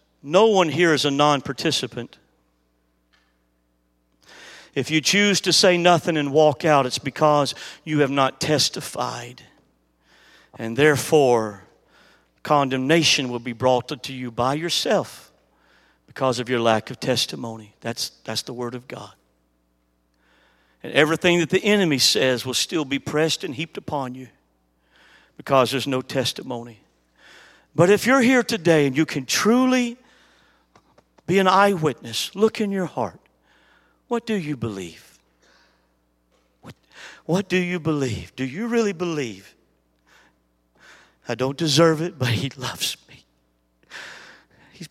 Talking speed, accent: 130 wpm, American